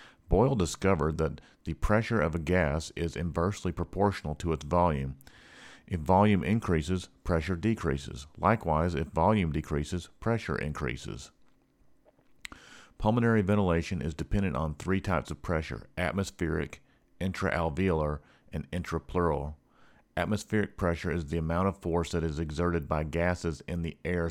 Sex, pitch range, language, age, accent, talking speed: male, 80-90 Hz, English, 50-69, American, 130 wpm